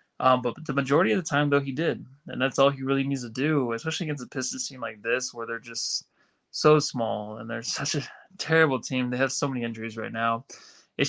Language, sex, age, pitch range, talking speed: English, male, 20-39, 125-145 Hz, 240 wpm